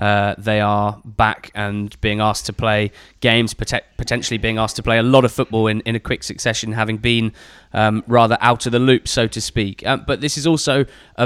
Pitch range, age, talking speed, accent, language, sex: 110-130 Hz, 20-39, 220 wpm, British, English, male